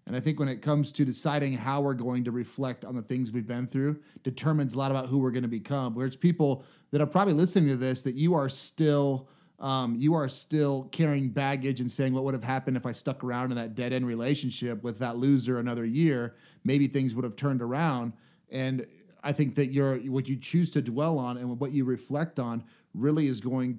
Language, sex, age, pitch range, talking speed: English, male, 30-49, 130-160 Hz, 230 wpm